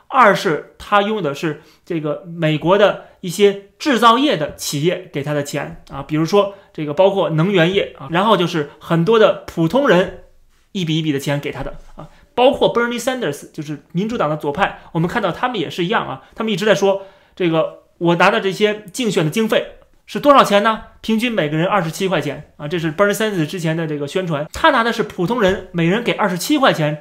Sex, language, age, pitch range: male, Chinese, 30-49, 160-225 Hz